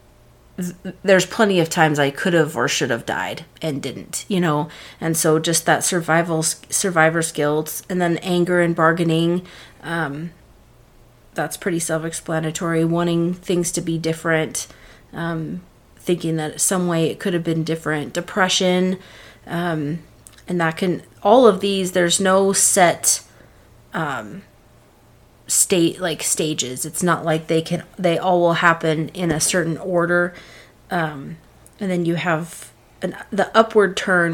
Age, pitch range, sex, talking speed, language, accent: 30-49, 160-185 Hz, female, 145 wpm, English, American